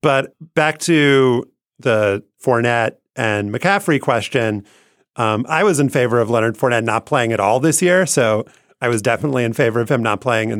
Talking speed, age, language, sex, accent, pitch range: 185 wpm, 30-49, English, male, American, 105-135 Hz